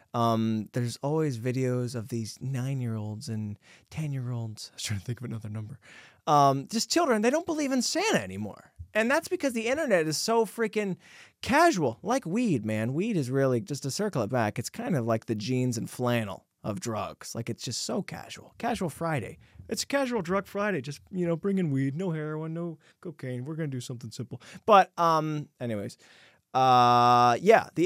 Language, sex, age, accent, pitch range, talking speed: English, male, 20-39, American, 125-200 Hz, 190 wpm